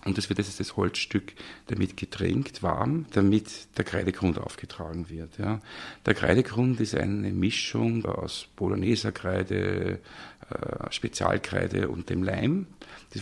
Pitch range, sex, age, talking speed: 90-110 Hz, male, 50-69, 125 wpm